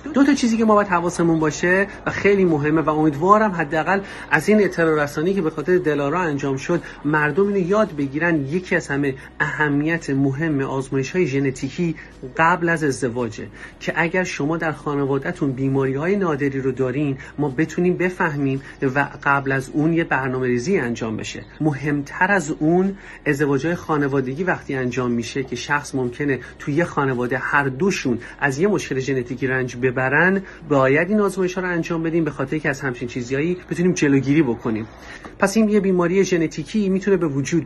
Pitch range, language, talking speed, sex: 135-180 Hz, English, 165 wpm, male